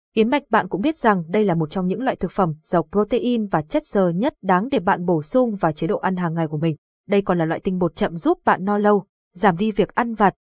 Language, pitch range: Vietnamese, 185-230 Hz